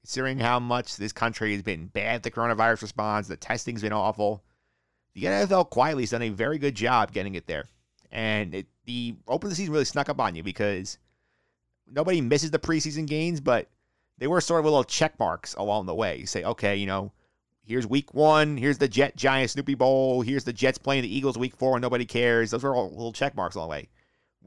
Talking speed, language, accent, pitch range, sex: 215 wpm, English, American, 105-135 Hz, male